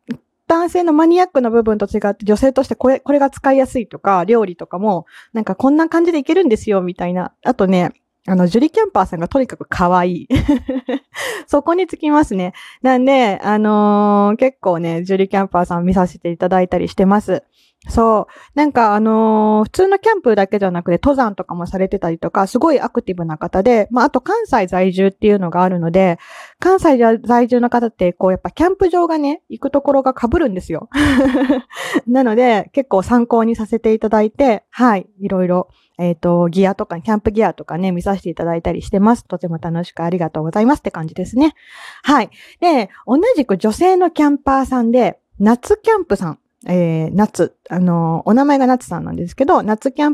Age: 20-39